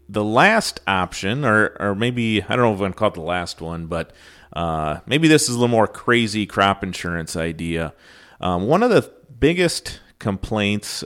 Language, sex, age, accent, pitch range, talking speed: English, male, 30-49, American, 90-115 Hz, 195 wpm